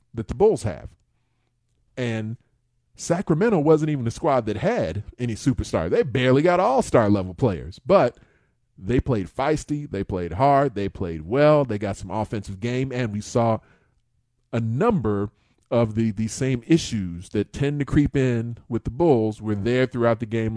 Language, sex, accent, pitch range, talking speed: English, male, American, 110-135 Hz, 170 wpm